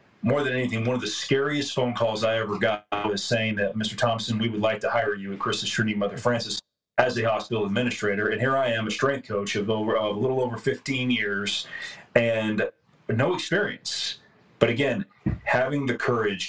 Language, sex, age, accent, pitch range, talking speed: English, male, 30-49, American, 105-125 Hz, 195 wpm